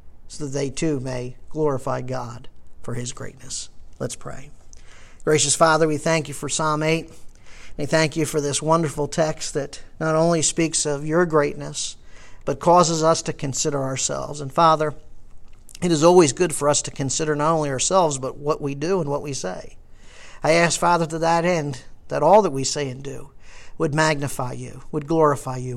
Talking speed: 185 wpm